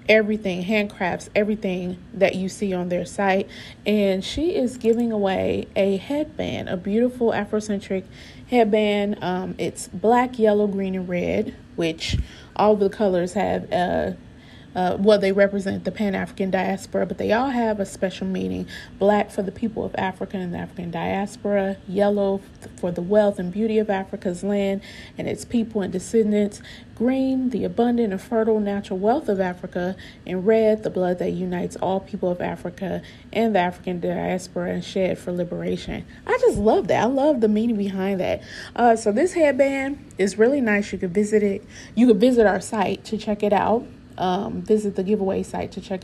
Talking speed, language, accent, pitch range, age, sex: 175 wpm, English, American, 190-220 Hz, 30-49, female